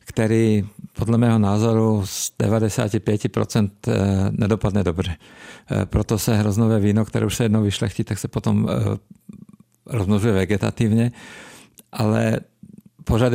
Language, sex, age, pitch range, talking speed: Czech, male, 50-69, 105-115 Hz, 110 wpm